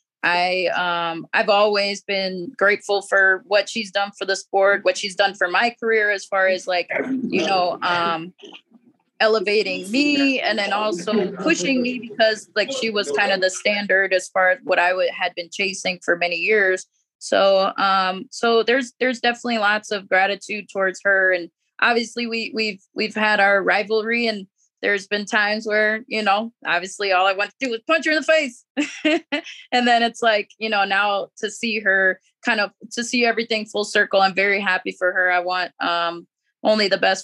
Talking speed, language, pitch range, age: 190 wpm, English, 185-220 Hz, 20-39